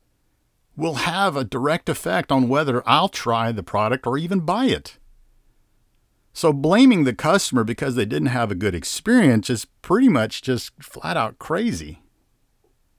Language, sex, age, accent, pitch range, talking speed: English, male, 50-69, American, 100-135 Hz, 150 wpm